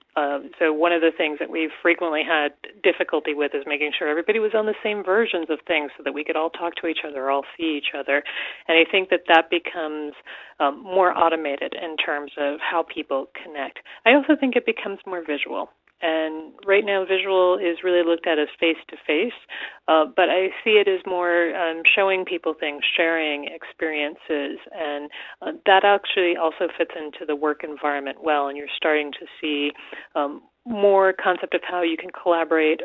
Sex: female